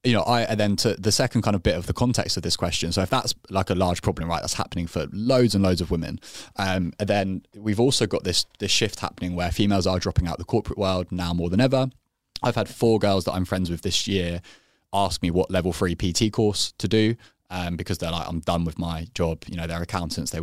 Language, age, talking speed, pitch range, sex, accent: English, 20-39, 260 wpm, 85-105 Hz, male, British